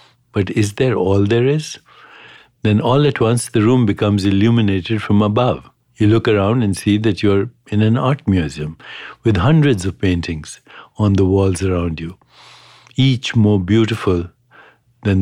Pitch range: 95-115 Hz